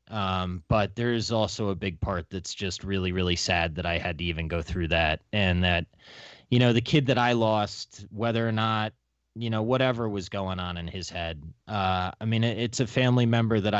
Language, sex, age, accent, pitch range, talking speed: English, male, 20-39, American, 90-110 Hz, 215 wpm